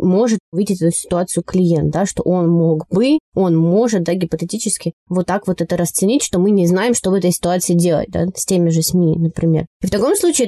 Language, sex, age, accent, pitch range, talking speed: Russian, female, 20-39, native, 175-215 Hz, 220 wpm